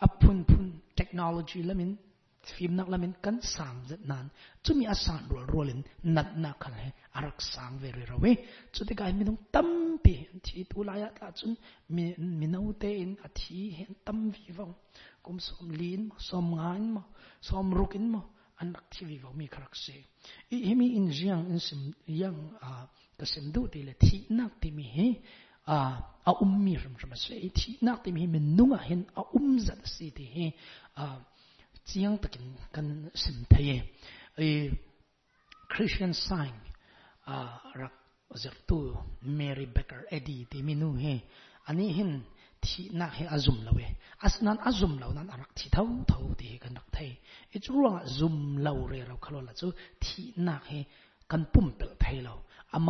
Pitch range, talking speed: 140-200 Hz, 55 wpm